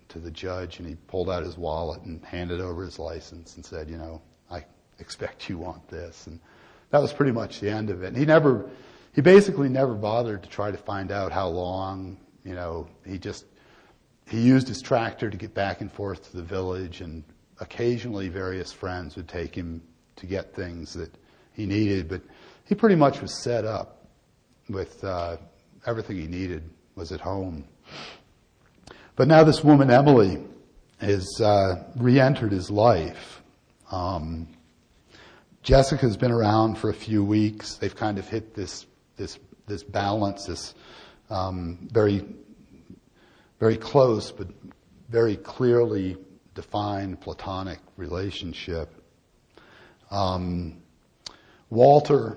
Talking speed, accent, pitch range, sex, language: 150 wpm, American, 85-110 Hz, male, English